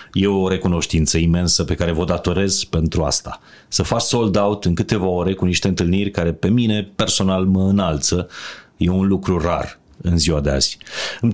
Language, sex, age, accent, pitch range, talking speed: Romanian, male, 30-49, native, 80-100 Hz, 185 wpm